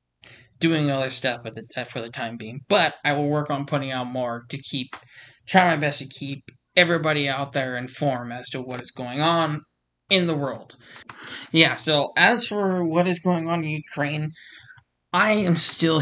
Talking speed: 180 wpm